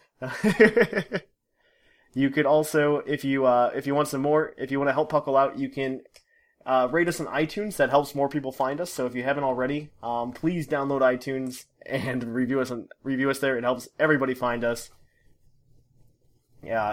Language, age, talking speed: English, 20-39, 190 wpm